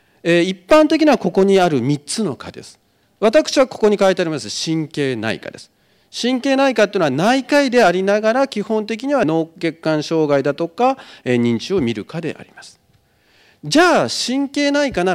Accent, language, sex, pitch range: native, Japanese, male, 150-235 Hz